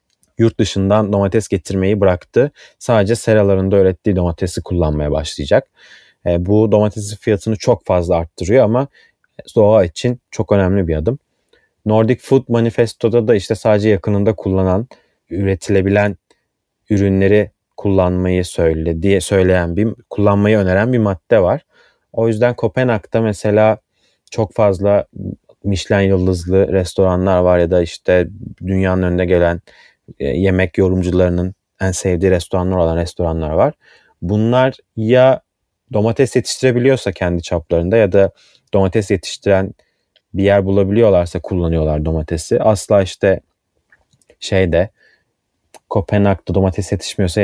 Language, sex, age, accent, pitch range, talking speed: Turkish, male, 30-49, native, 90-110 Hz, 115 wpm